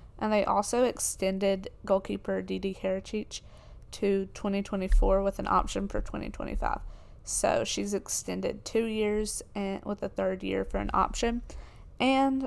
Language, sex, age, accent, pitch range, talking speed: English, female, 20-39, American, 185-210 Hz, 135 wpm